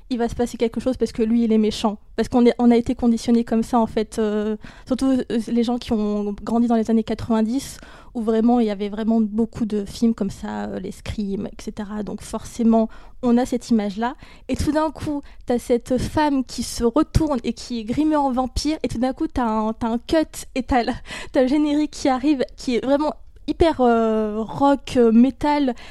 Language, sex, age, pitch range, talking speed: French, female, 20-39, 225-260 Hz, 225 wpm